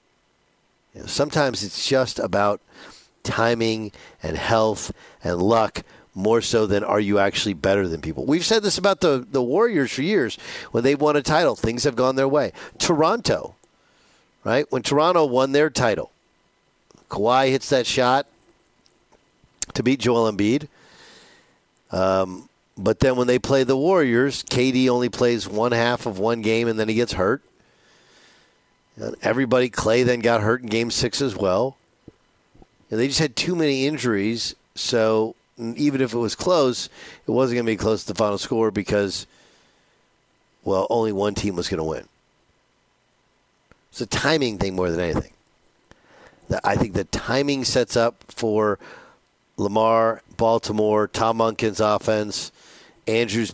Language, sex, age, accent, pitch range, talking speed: English, male, 50-69, American, 105-125 Hz, 150 wpm